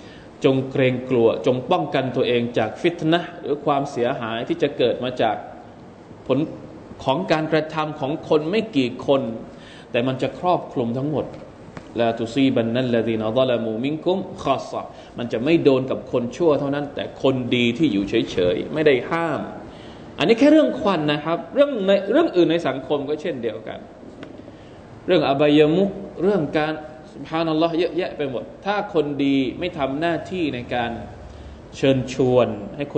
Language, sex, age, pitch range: Thai, male, 20-39, 115-155 Hz